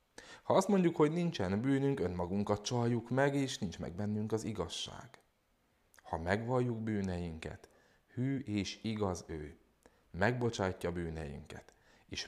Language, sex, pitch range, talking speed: Hungarian, male, 85-105 Hz, 120 wpm